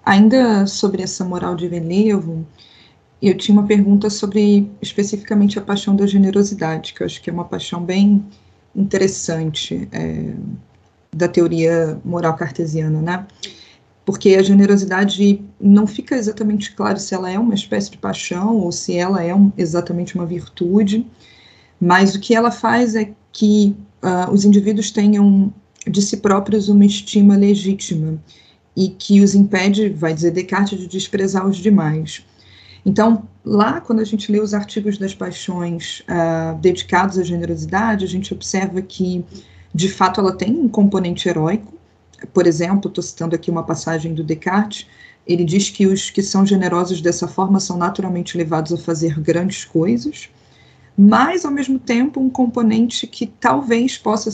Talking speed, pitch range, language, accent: 150 wpm, 175-205 Hz, Portuguese, Brazilian